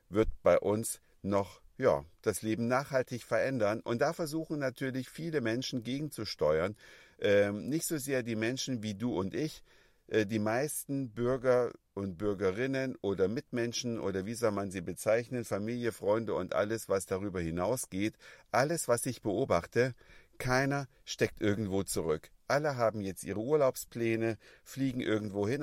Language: German